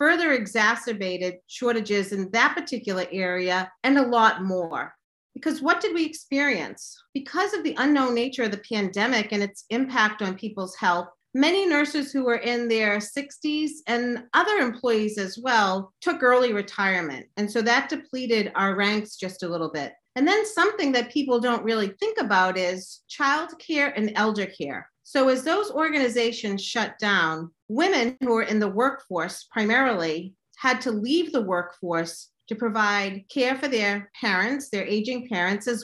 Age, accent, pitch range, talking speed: 40-59, American, 200-270 Hz, 165 wpm